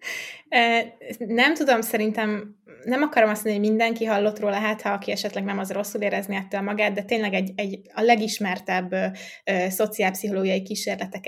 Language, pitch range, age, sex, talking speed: Hungarian, 195-215 Hz, 20-39, female, 165 wpm